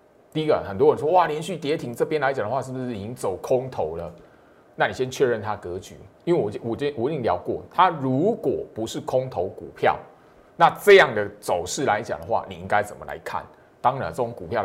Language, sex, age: Chinese, male, 30-49